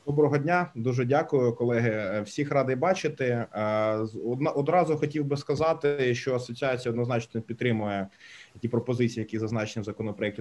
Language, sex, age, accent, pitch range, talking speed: Ukrainian, male, 20-39, native, 110-135 Hz, 125 wpm